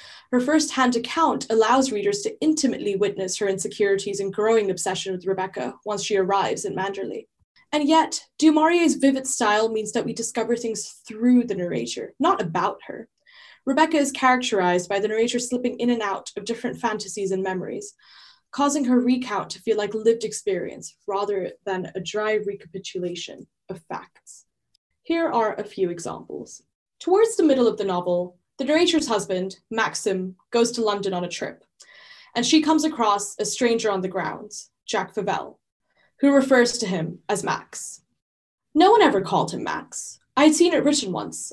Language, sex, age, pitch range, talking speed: English, female, 10-29, 200-265 Hz, 165 wpm